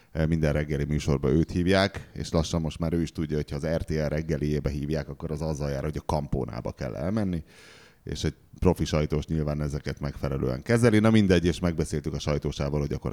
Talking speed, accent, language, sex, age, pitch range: 195 wpm, Finnish, English, male, 30-49, 75-95 Hz